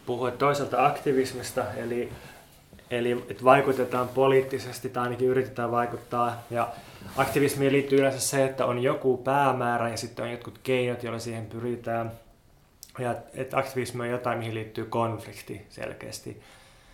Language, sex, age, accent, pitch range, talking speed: Finnish, male, 20-39, native, 115-130 Hz, 135 wpm